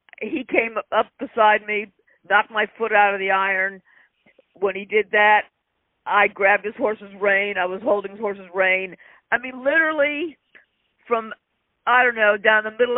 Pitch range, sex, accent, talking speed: 195-275 Hz, female, American, 170 wpm